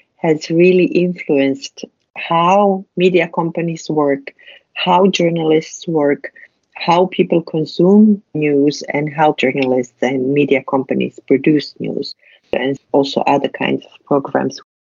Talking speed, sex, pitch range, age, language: 115 wpm, female, 135-160 Hz, 50-69, English